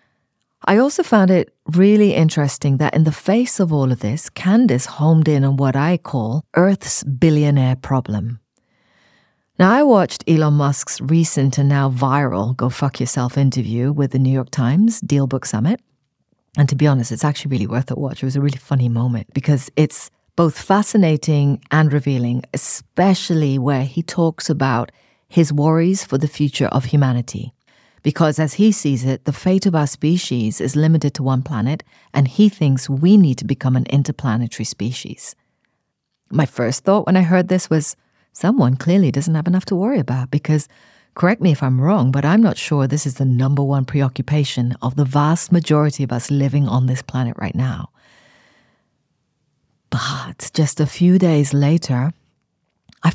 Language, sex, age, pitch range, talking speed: English, female, 40-59, 130-165 Hz, 175 wpm